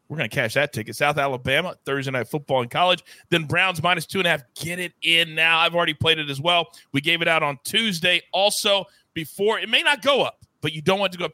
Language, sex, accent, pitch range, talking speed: English, male, American, 130-180 Hz, 270 wpm